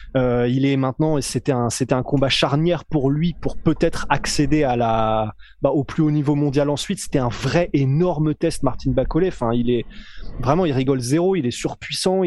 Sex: male